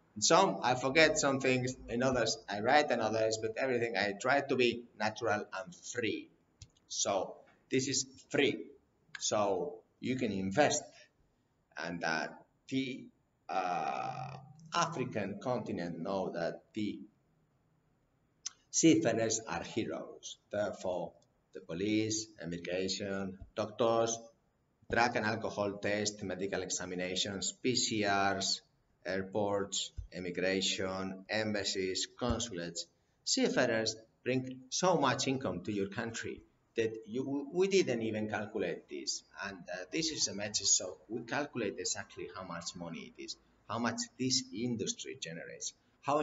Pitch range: 95-130 Hz